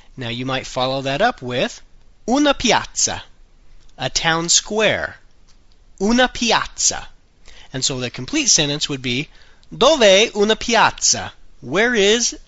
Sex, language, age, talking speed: male, Italian, 40-59, 125 wpm